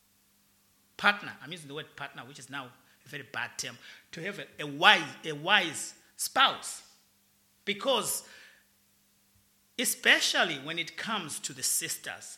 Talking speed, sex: 140 wpm, male